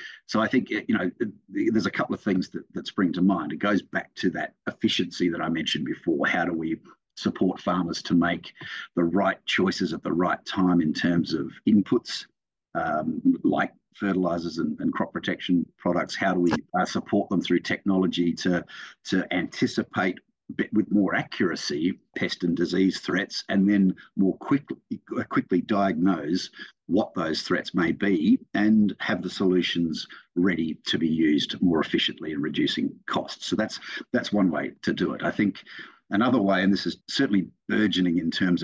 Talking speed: 175 wpm